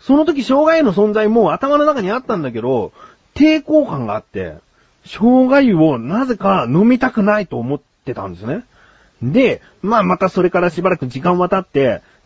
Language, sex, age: Japanese, male, 40-59